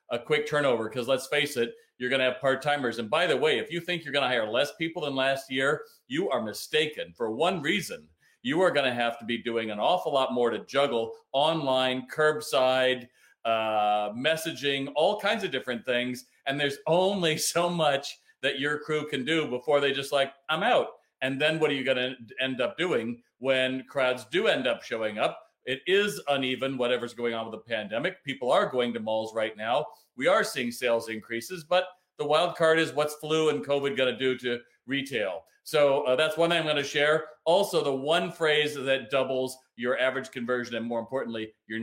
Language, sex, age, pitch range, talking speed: English, male, 40-59, 120-155 Hz, 205 wpm